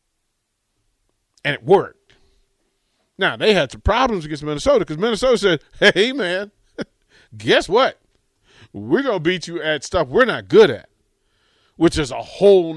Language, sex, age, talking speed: English, male, 40-59, 150 wpm